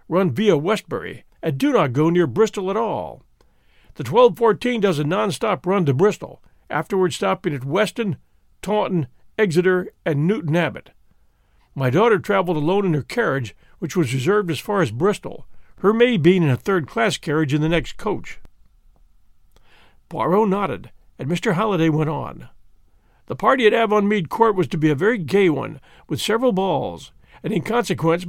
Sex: male